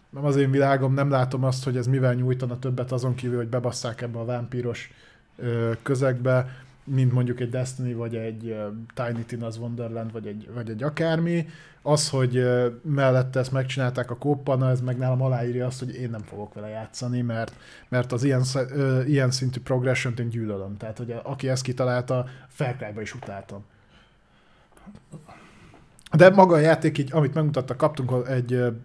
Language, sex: Hungarian, male